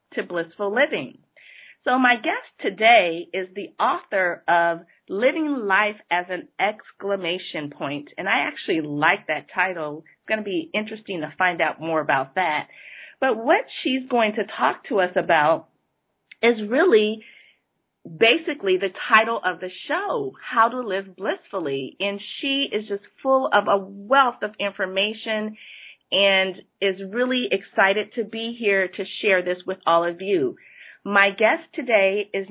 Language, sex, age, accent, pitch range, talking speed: English, female, 30-49, American, 185-240 Hz, 155 wpm